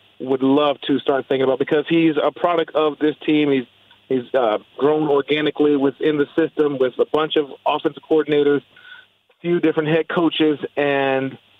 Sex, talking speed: male, 170 wpm